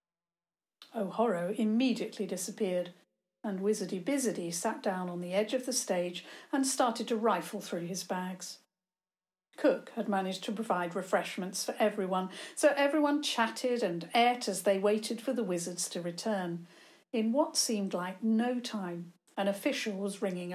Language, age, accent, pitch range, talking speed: English, 50-69, British, 185-245 Hz, 150 wpm